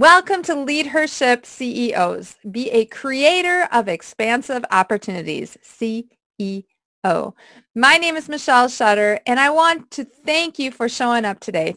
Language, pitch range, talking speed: English, 225-300 Hz, 135 wpm